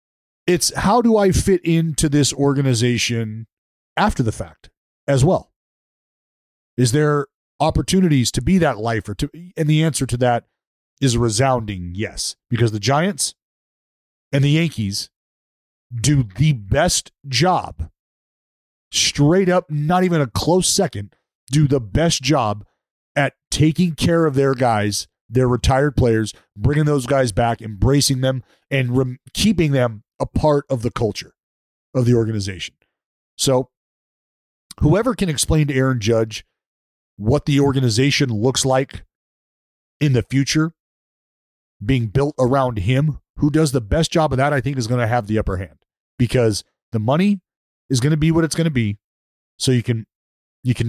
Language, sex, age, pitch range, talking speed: English, male, 30-49, 105-150 Hz, 155 wpm